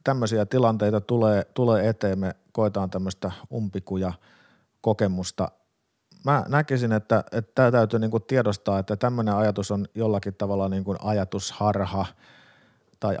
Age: 50-69